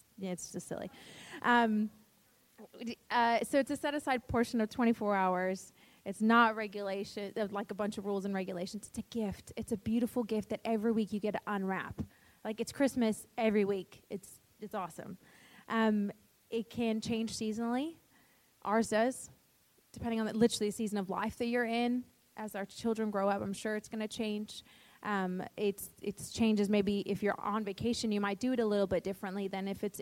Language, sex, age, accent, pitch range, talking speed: English, female, 20-39, American, 200-230 Hz, 190 wpm